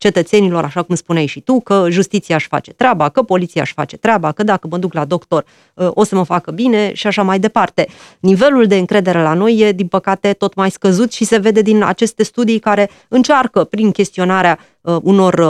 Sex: female